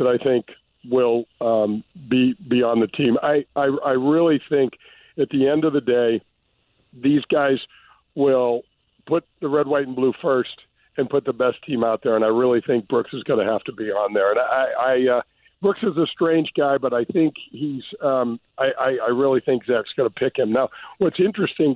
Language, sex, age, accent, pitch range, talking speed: English, male, 50-69, American, 125-160 Hz, 215 wpm